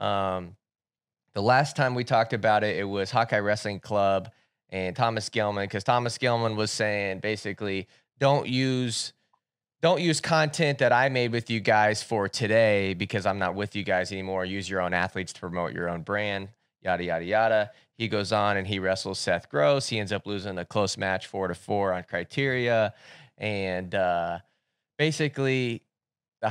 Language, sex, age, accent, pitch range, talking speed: English, male, 20-39, American, 100-135 Hz, 175 wpm